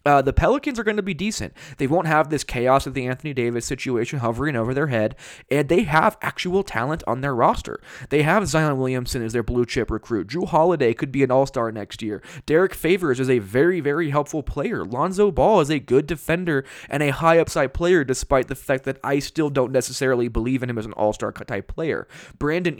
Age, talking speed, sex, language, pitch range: 20-39, 215 wpm, male, English, 125-160 Hz